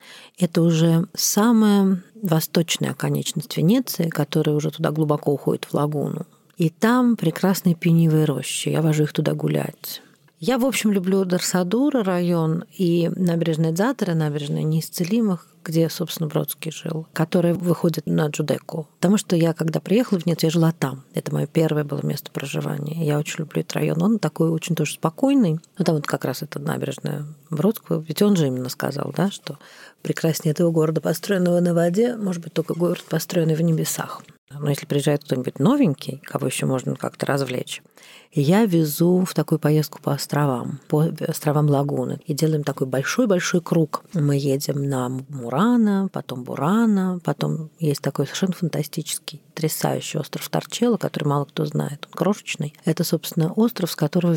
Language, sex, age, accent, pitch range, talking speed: Russian, female, 40-59, native, 150-180 Hz, 160 wpm